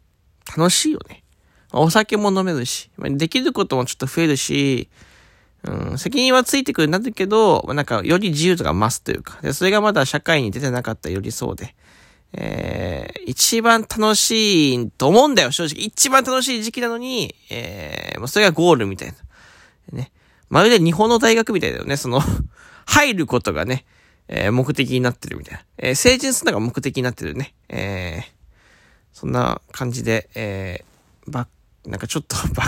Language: Japanese